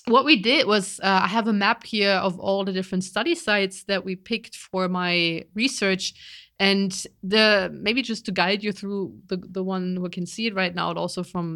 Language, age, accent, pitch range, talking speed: English, 20-39, German, 180-215 Hz, 220 wpm